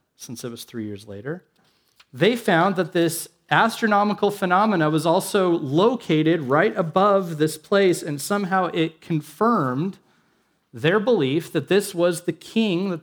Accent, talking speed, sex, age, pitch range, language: American, 145 wpm, male, 40-59, 155-215 Hz, English